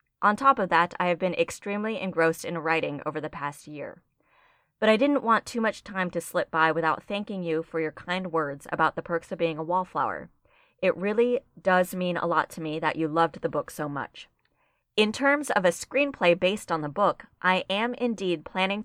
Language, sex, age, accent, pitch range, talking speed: English, female, 20-39, American, 165-210 Hz, 215 wpm